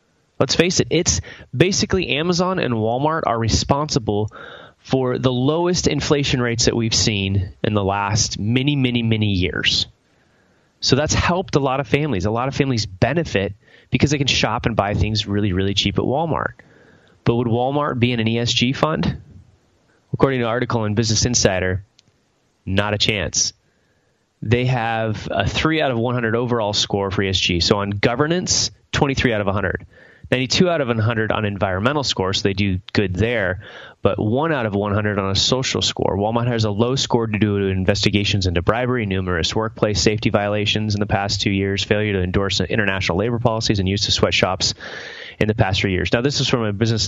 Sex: male